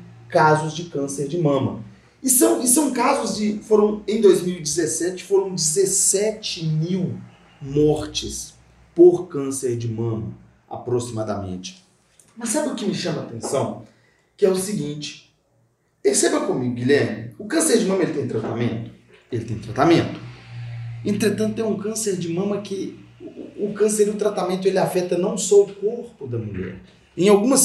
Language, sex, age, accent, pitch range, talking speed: Portuguese, male, 40-59, Brazilian, 130-205 Hz, 150 wpm